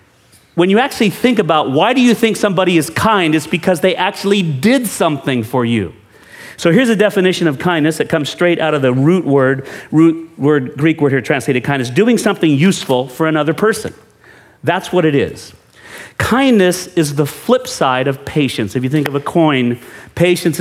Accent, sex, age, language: American, male, 40-59, English